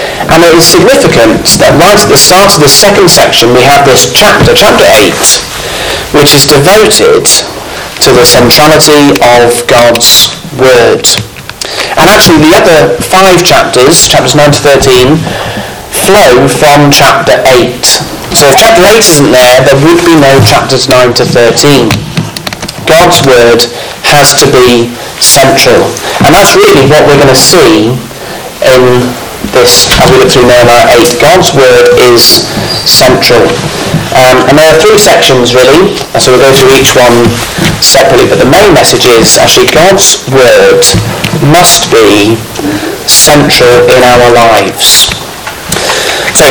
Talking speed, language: 145 wpm, English